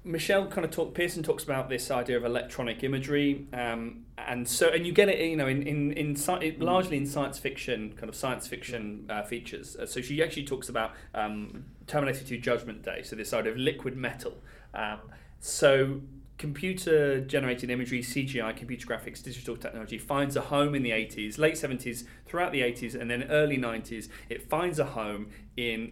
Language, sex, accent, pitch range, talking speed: English, male, British, 110-140 Hz, 190 wpm